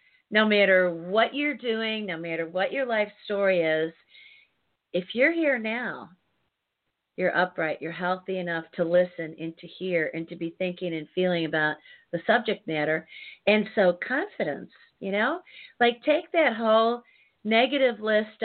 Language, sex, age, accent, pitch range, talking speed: English, female, 40-59, American, 180-235 Hz, 155 wpm